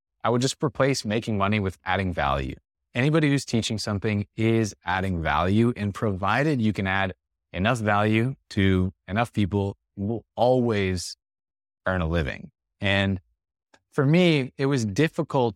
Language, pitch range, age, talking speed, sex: English, 90-115 Hz, 30-49, 145 wpm, male